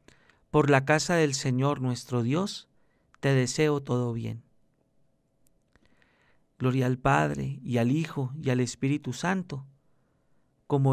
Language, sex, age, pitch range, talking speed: Spanish, male, 40-59, 130-165 Hz, 120 wpm